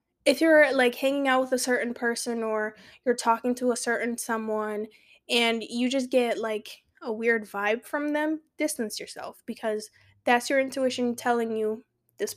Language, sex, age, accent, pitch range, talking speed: English, female, 20-39, American, 215-260 Hz, 170 wpm